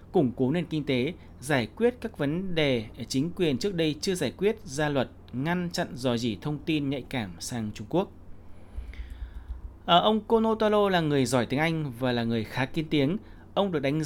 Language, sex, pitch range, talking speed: Vietnamese, male, 120-170 Hz, 200 wpm